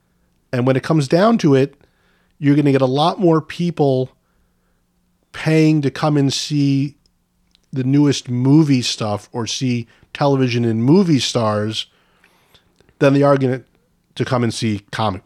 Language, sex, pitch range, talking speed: English, male, 110-145 Hz, 155 wpm